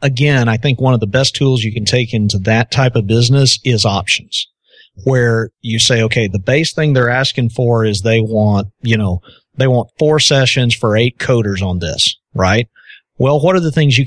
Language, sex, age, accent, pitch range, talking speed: English, male, 40-59, American, 110-135 Hz, 210 wpm